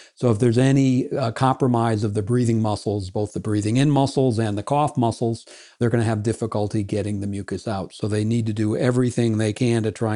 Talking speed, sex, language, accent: 225 wpm, male, English, American